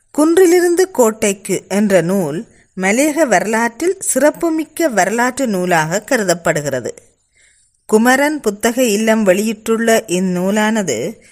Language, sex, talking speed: Tamil, female, 80 wpm